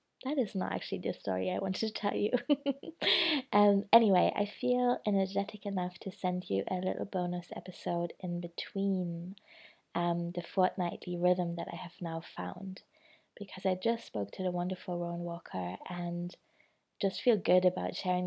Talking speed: 165 wpm